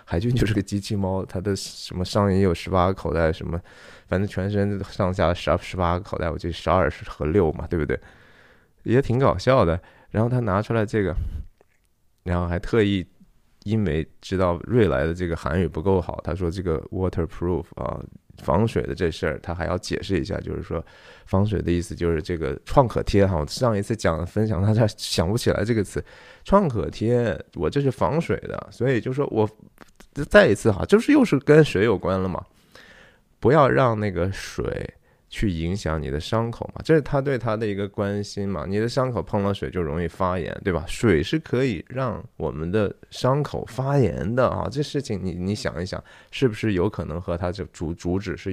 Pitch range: 85-110 Hz